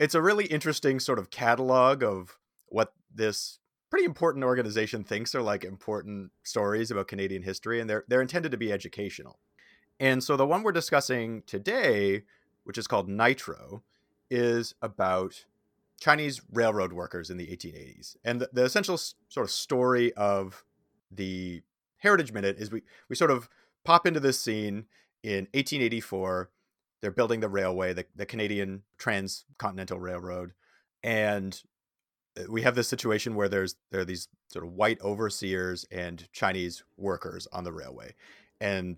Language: English